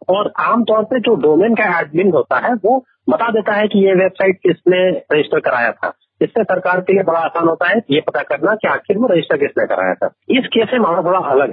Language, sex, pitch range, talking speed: Hindi, male, 170-235 Hz, 230 wpm